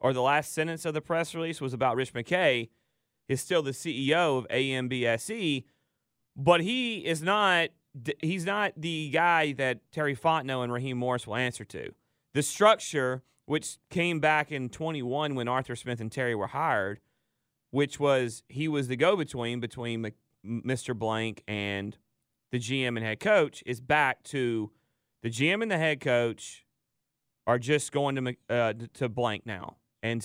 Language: English